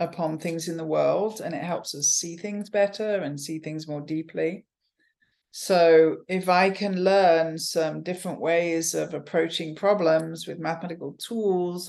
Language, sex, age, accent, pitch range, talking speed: English, female, 50-69, British, 160-205 Hz, 155 wpm